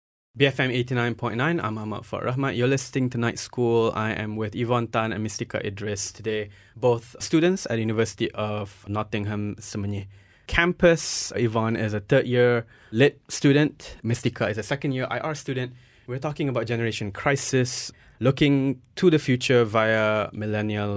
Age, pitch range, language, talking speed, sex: 20-39, 105-135 Hz, English, 145 wpm, male